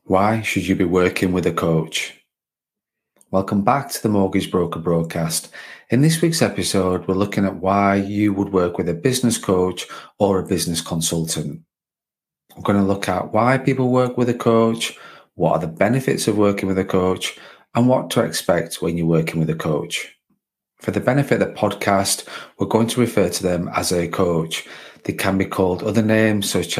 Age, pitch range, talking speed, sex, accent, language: 30-49, 90-110 Hz, 195 wpm, male, British, English